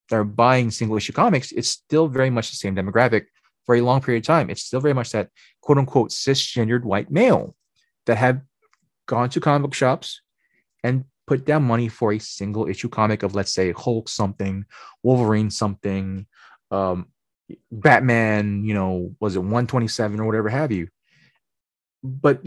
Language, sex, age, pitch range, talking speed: English, male, 20-39, 105-130 Hz, 165 wpm